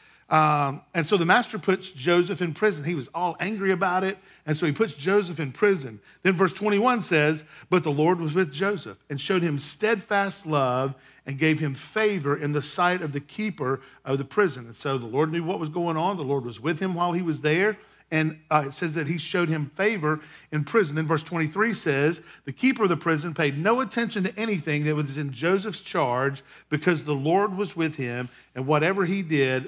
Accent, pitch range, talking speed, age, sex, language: American, 140-185 Hz, 220 wpm, 50-69, male, English